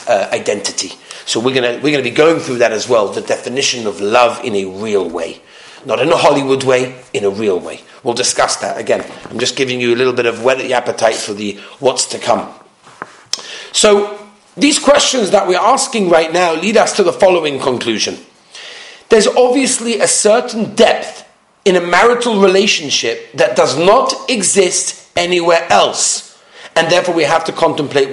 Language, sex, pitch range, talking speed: English, male, 150-240 Hz, 180 wpm